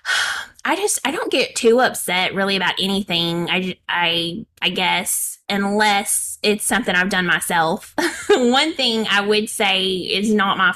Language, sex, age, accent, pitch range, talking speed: English, female, 20-39, American, 190-230 Hz, 155 wpm